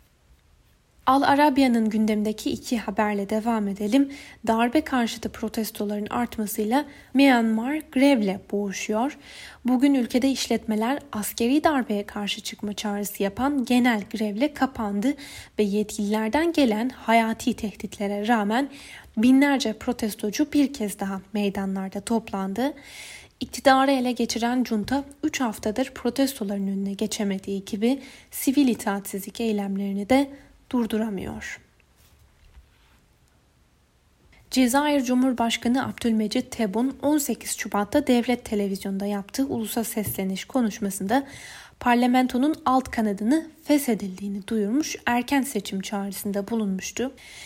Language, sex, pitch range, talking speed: Turkish, female, 205-260 Hz, 95 wpm